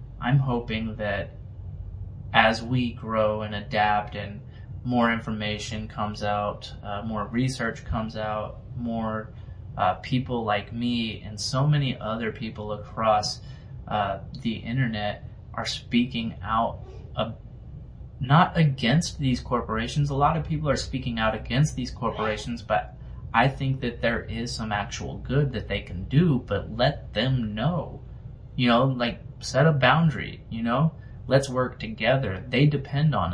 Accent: American